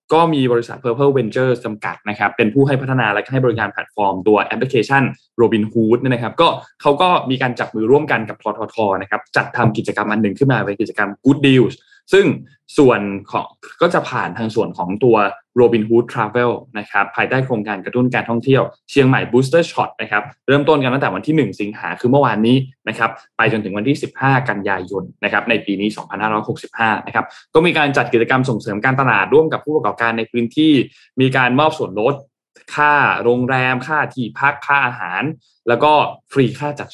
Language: Thai